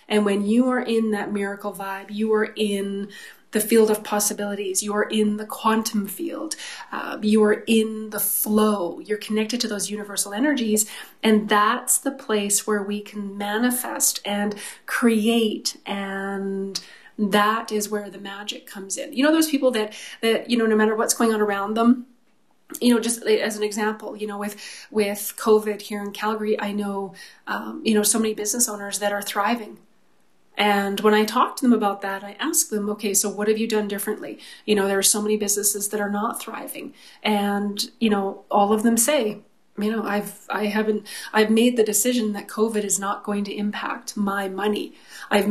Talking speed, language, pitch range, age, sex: 195 wpm, English, 205-225 Hz, 30-49, female